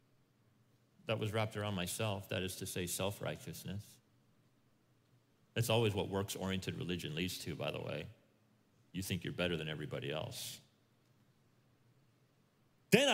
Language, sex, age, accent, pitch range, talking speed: English, male, 40-59, American, 105-130 Hz, 130 wpm